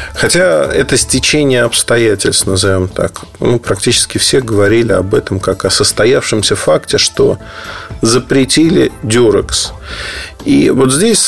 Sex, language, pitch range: male, Russian, 105-140 Hz